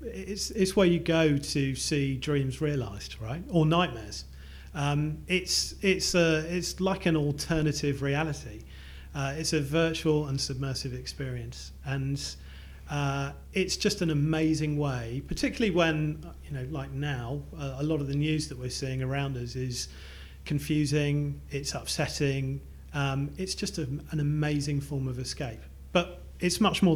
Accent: British